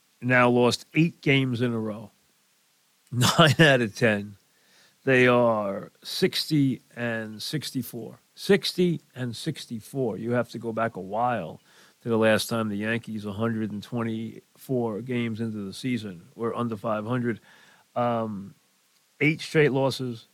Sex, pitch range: male, 115-145 Hz